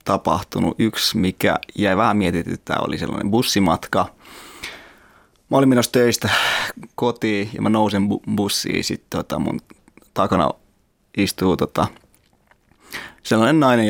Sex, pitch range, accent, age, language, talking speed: male, 100-120 Hz, native, 30-49, Finnish, 125 wpm